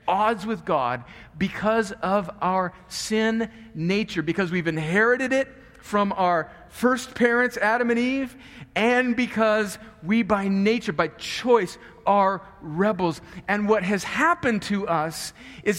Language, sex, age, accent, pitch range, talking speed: English, male, 50-69, American, 165-220 Hz, 135 wpm